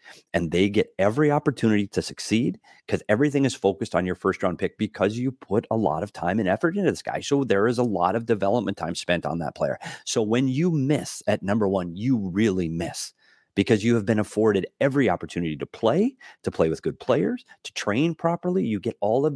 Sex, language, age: male, English, 30-49